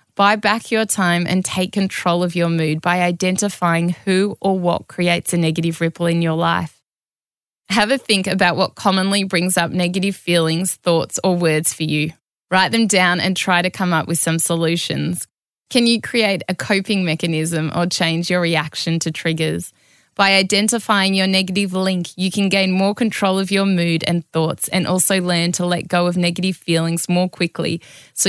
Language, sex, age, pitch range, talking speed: English, female, 20-39, 165-190 Hz, 185 wpm